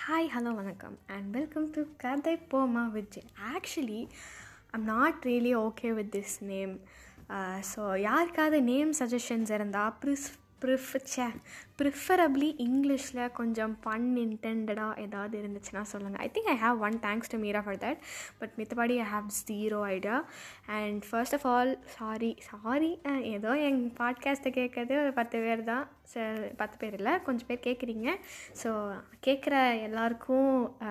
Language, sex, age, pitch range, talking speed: Tamil, female, 20-39, 210-255 Hz, 150 wpm